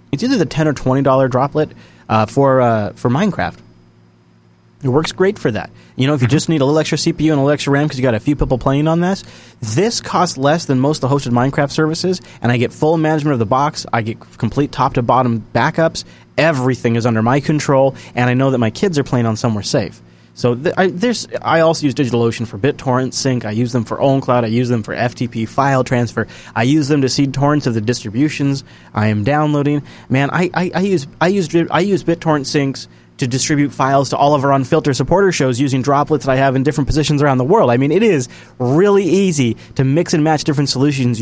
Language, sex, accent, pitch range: English, male, American, 120-150 Hz